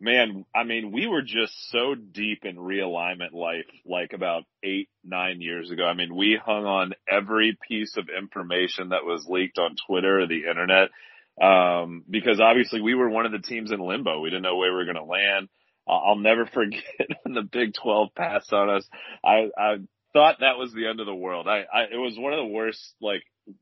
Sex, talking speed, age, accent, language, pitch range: male, 210 wpm, 30-49, American, English, 95-110 Hz